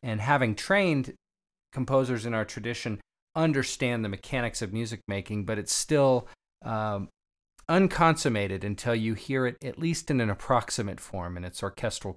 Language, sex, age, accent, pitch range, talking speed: English, male, 40-59, American, 100-125 Hz, 155 wpm